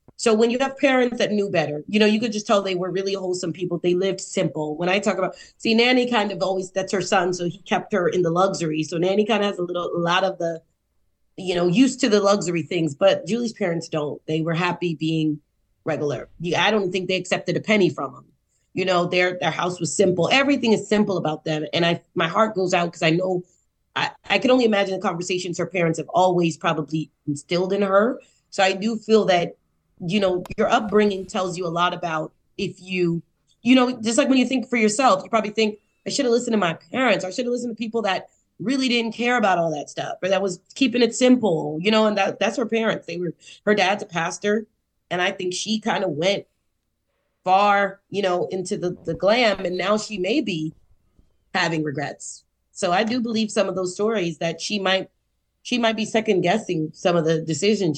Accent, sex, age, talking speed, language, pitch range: American, female, 30-49, 230 wpm, English, 170-215 Hz